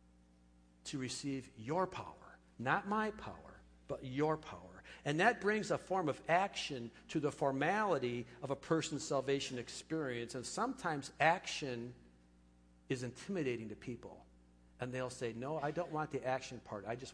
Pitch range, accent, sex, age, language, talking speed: 110-160 Hz, American, male, 50-69, English, 155 wpm